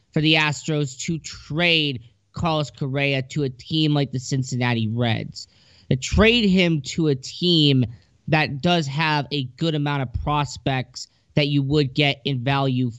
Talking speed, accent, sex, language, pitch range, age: 155 wpm, American, male, English, 120-160 Hz, 20-39